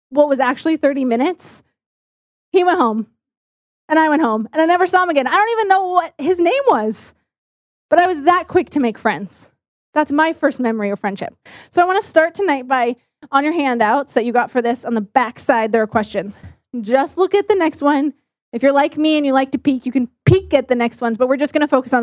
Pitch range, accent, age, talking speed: 225-315 Hz, American, 20-39, 250 wpm